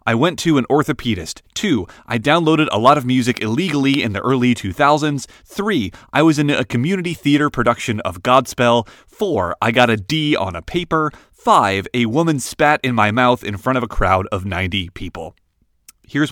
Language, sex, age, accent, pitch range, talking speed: English, male, 30-49, American, 105-140 Hz, 190 wpm